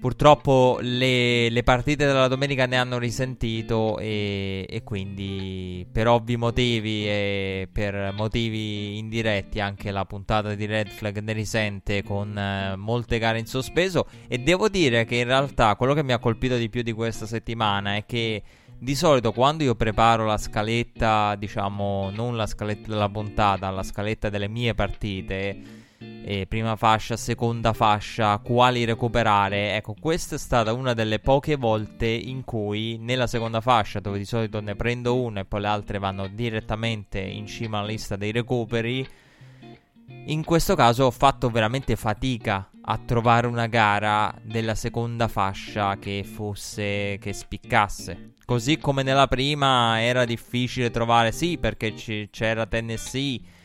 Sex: male